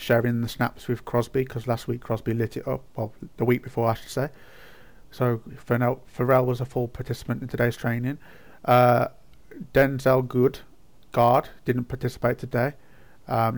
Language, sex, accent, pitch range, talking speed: English, male, British, 120-130 Hz, 165 wpm